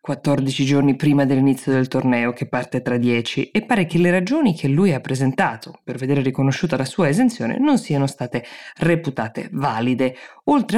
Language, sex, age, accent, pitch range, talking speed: Italian, female, 20-39, native, 135-175 Hz, 175 wpm